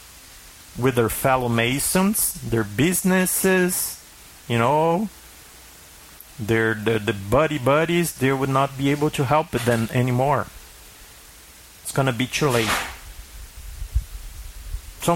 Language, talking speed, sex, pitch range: English, 105 wpm, male, 100-145 Hz